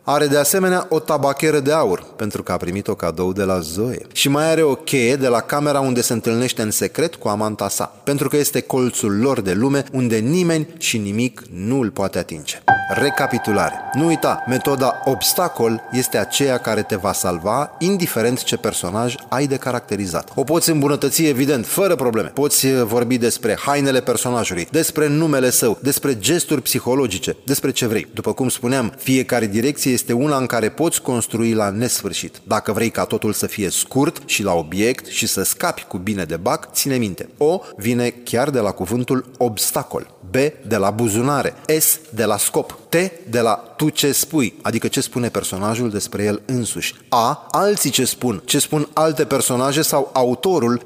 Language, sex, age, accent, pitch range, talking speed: Romanian, male, 30-49, native, 110-145 Hz, 180 wpm